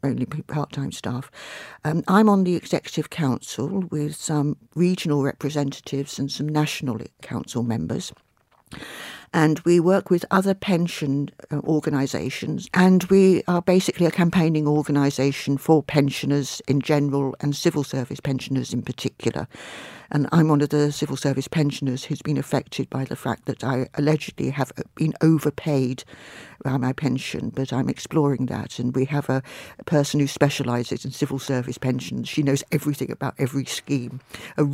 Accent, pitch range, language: British, 135-175 Hz, English